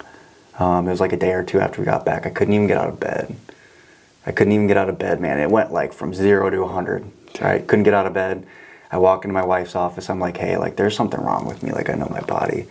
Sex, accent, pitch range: male, American, 90-100 Hz